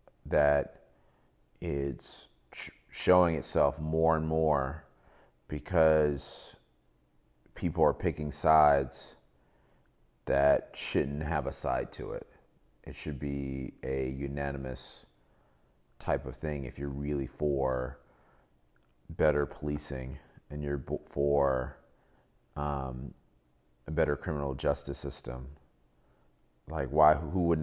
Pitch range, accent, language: 65-75 Hz, American, English